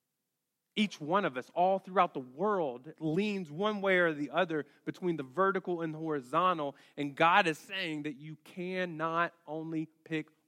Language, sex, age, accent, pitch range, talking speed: English, male, 40-59, American, 145-185 Hz, 160 wpm